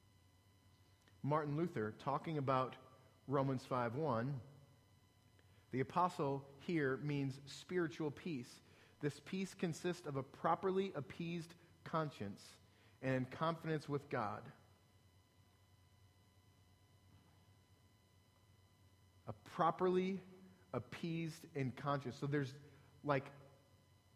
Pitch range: 105-155 Hz